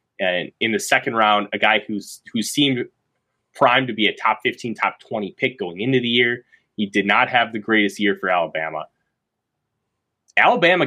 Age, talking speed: 20-39, 180 wpm